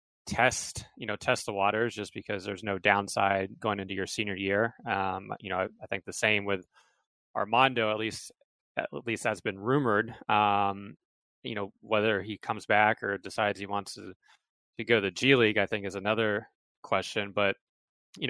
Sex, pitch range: male, 100-110 Hz